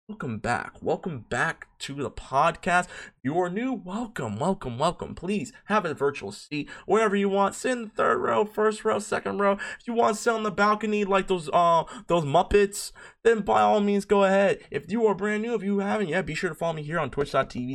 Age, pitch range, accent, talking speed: 20-39, 140-210 Hz, American, 225 wpm